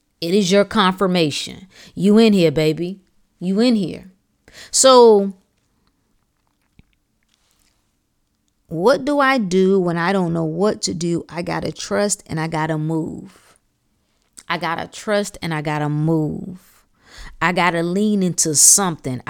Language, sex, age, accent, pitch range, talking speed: English, female, 30-49, American, 165-230 Hz, 145 wpm